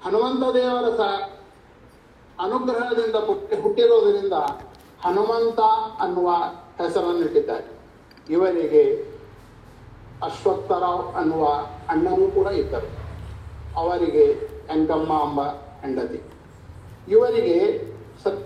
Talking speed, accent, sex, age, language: 65 wpm, native, male, 50-69, Kannada